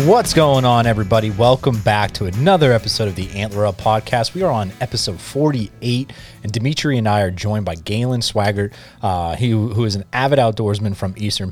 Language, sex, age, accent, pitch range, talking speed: English, male, 30-49, American, 95-120 Hz, 200 wpm